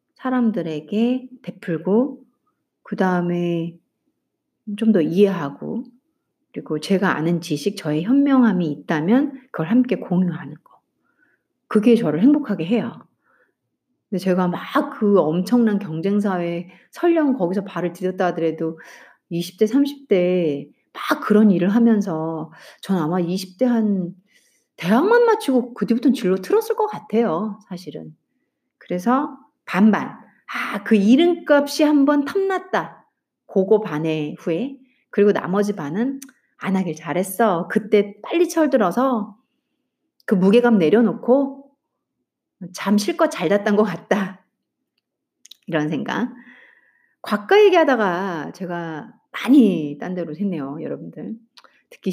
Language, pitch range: Korean, 180-255 Hz